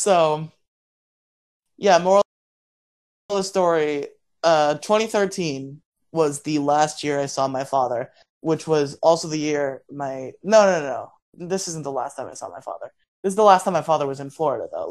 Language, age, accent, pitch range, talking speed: English, 20-39, American, 135-155 Hz, 185 wpm